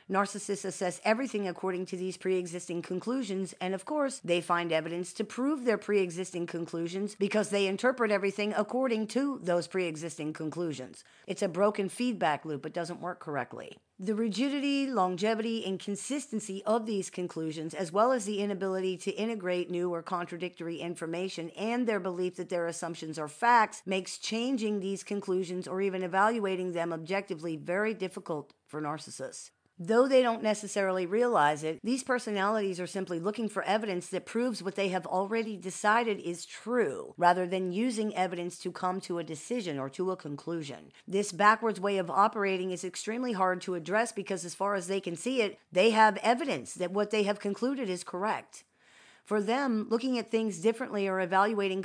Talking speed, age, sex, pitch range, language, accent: 170 wpm, 40-59, female, 175-215 Hz, English, American